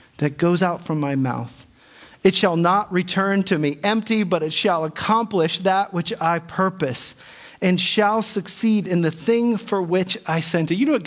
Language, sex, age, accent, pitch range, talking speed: English, male, 40-59, American, 175-220 Hz, 190 wpm